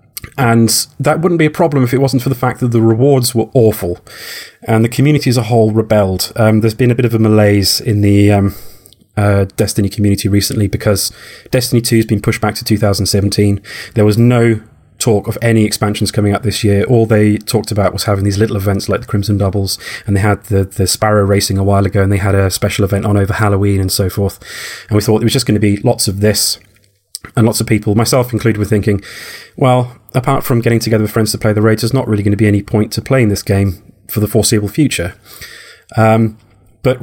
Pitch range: 100-115 Hz